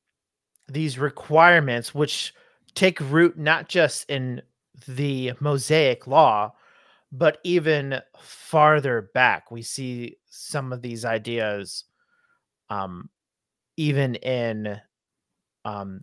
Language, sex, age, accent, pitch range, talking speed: English, male, 30-49, American, 125-155 Hz, 95 wpm